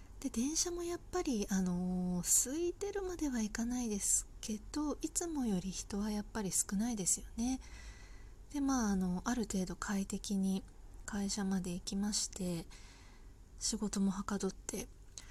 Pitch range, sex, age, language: 180-270 Hz, female, 20-39, Japanese